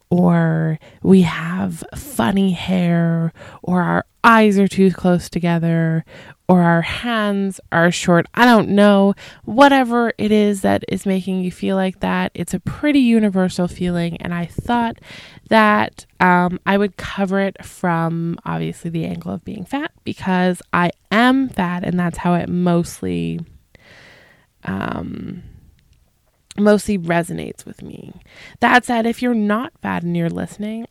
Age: 20-39